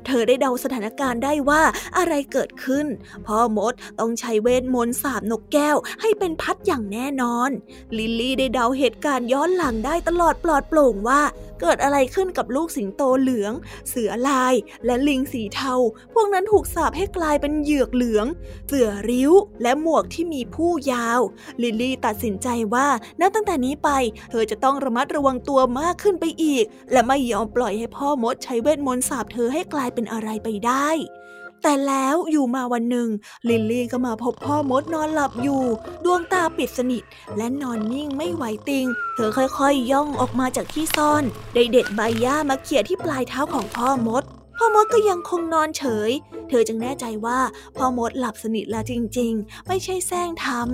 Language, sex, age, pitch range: Thai, female, 20-39, 235-300 Hz